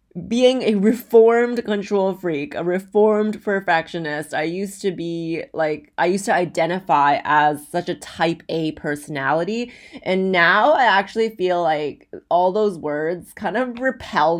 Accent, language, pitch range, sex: American, English, 165-220 Hz, female